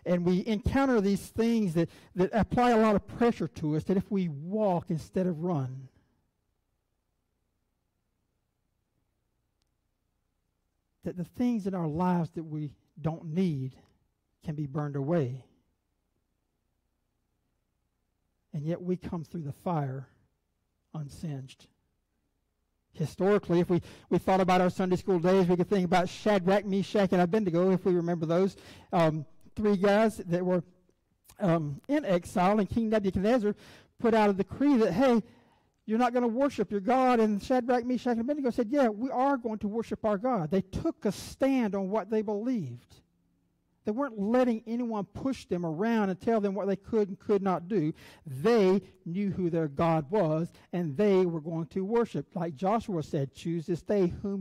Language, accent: English, American